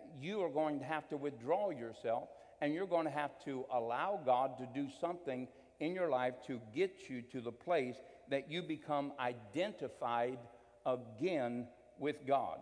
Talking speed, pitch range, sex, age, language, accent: 165 wpm, 125-170 Hz, male, 60-79, English, American